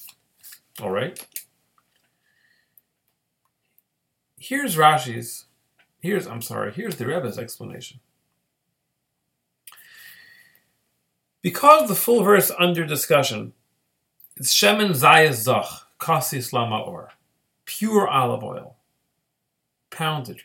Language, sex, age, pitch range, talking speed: English, male, 40-59, 130-195 Hz, 75 wpm